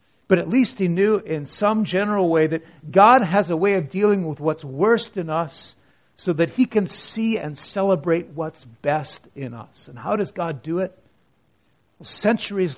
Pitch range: 125-170 Hz